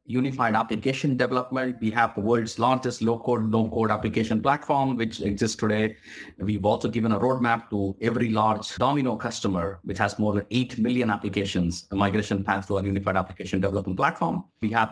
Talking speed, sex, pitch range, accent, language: 175 wpm, male, 100-125 Hz, Indian, English